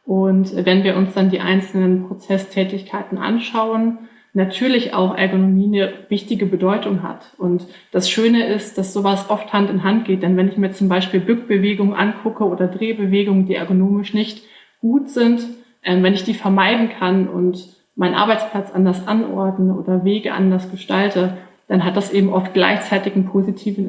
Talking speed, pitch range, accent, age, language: 160 wpm, 185-205 Hz, German, 20-39, German